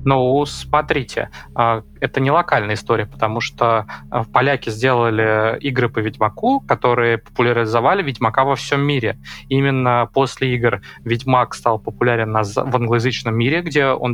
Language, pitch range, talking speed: Russian, 110-130 Hz, 125 wpm